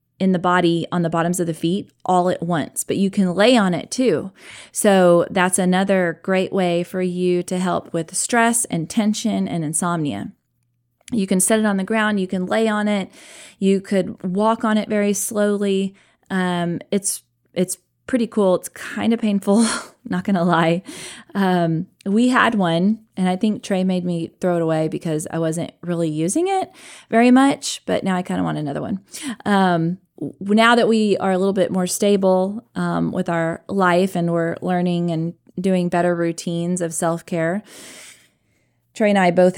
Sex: female